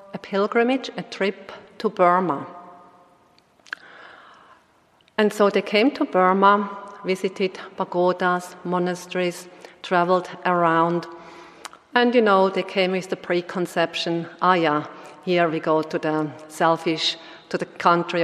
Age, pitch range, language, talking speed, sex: 40-59, 165-195 Hz, English, 115 wpm, female